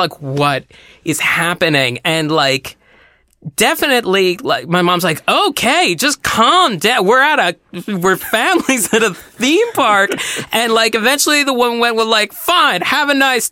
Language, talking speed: English, 160 wpm